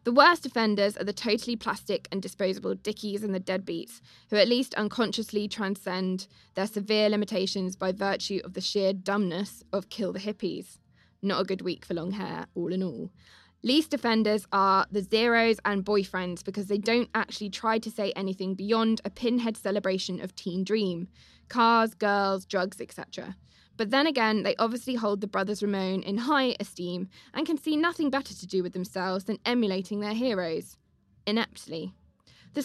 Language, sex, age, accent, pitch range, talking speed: English, female, 10-29, British, 190-225 Hz, 175 wpm